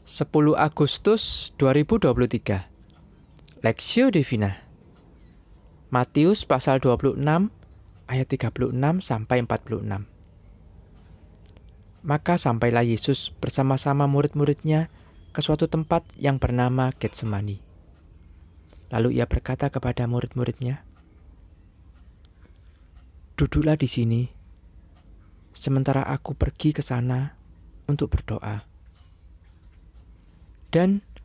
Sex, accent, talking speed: male, native, 75 wpm